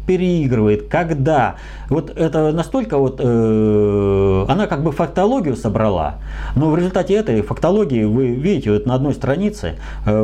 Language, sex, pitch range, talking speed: Russian, male, 100-150 Hz, 140 wpm